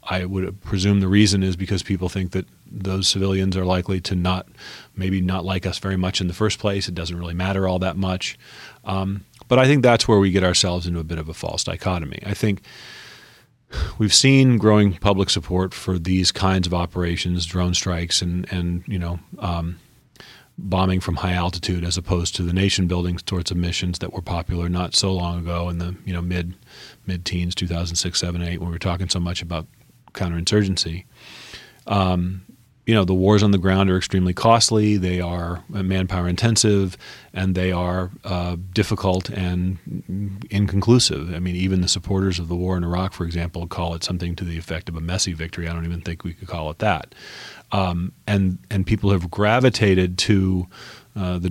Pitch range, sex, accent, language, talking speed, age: 90-100 Hz, male, American, English, 195 wpm, 40-59